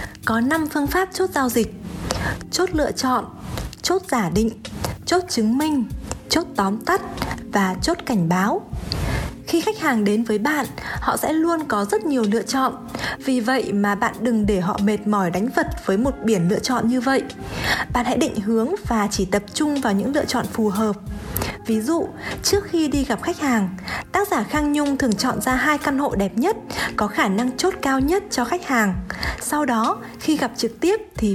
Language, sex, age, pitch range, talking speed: Vietnamese, female, 20-39, 220-300 Hz, 200 wpm